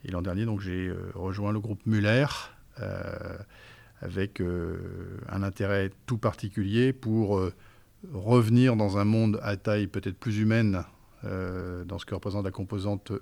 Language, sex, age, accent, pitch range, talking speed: French, male, 50-69, French, 100-120 Hz, 160 wpm